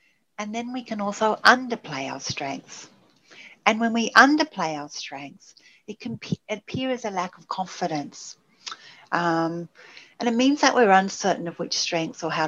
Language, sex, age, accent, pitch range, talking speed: English, female, 60-79, Australian, 165-215 Hz, 165 wpm